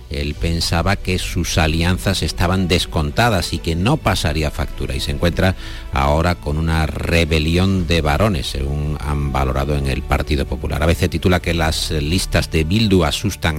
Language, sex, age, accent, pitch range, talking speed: Spanish, male, 50-69, Spanish, 75-95 Hz, 165 wpm